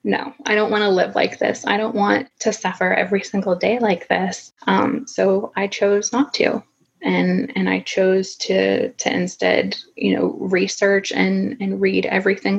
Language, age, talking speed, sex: English, 20-39, 180 wpm, female